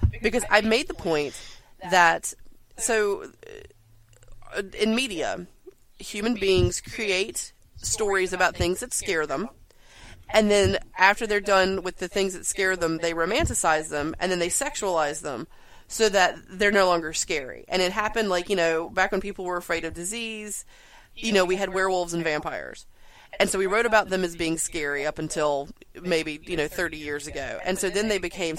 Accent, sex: American, female